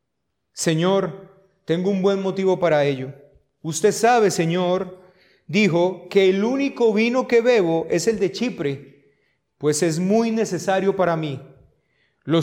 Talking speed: 135 wpm